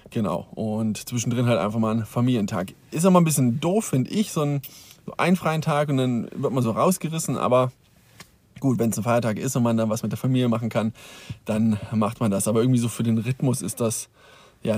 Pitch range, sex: 125-155 Hz, male